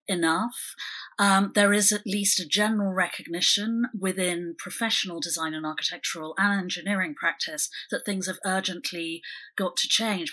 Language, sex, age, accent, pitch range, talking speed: English, female, 30-49, British, 175-210 Hz, 140 wpm